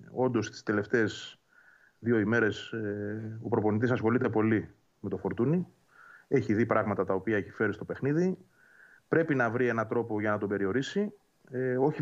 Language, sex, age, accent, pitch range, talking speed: Greek, male, 30-49, native, 110-155 Hz, 165 wpm